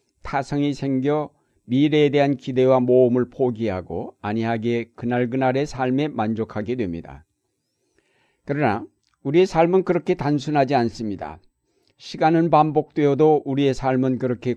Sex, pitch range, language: male, 115-140 Hz, Korean